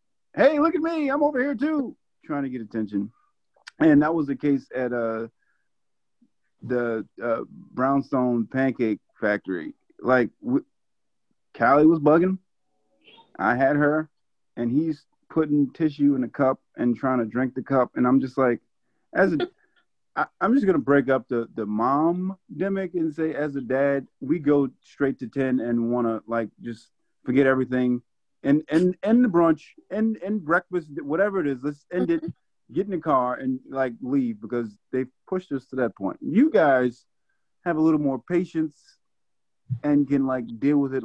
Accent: American